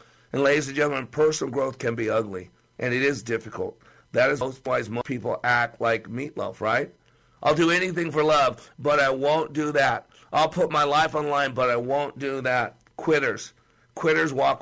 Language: English